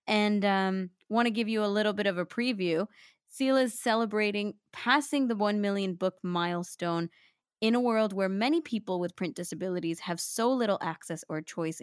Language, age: English, 20-39